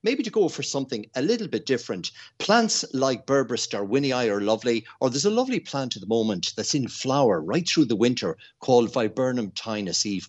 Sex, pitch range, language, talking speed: male, 105-155 Hz, English, 200 wpm